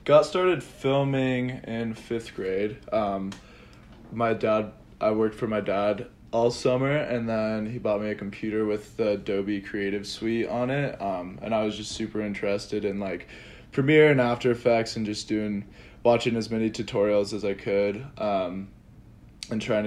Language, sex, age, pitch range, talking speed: English, male, 20-39, 100-120 Hz, 170 wpm